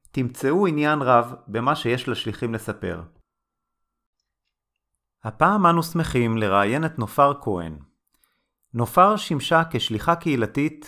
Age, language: 30-49, Hebrew